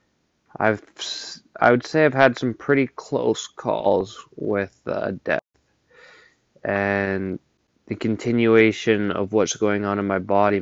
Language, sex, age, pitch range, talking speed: English, male, 20-39, 100-120 Hz, 135 wpm